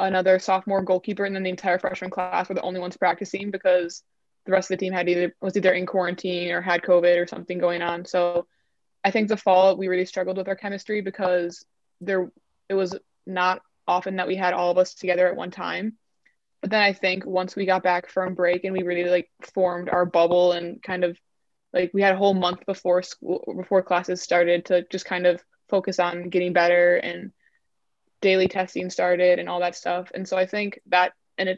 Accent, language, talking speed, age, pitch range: American, English, 215 wpm, 20-39, 180-190 Hz